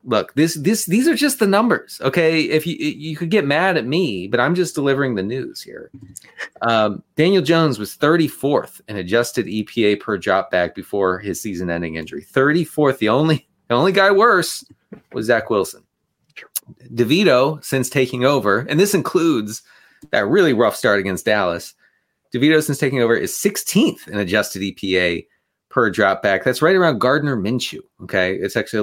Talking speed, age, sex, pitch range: 170 wpm, 30-49, male, 115-180 Hz